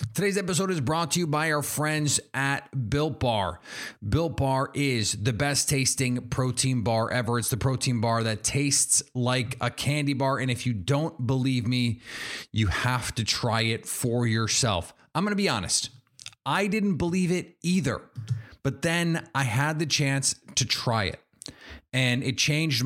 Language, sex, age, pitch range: English, male, 30-49, 120-150 Hz